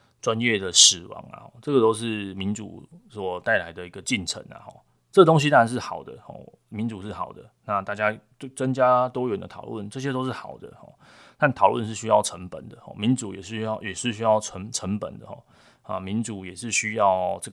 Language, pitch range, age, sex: Chinese, 95-120 Hz, 20-39, male